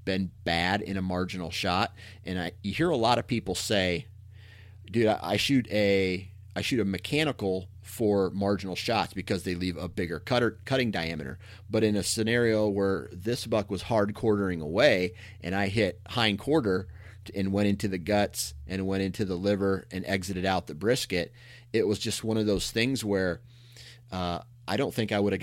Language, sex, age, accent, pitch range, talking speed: English, male, 30-49, American, 95-115 Hz, 195 wpm